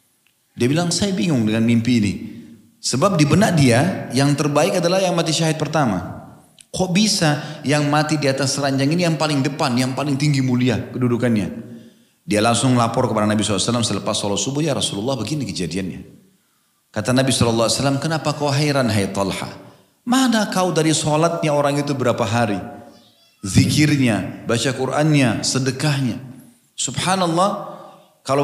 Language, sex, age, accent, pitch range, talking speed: Indonesian, male, 30-49, native, 120-160 Hz, 145 wpm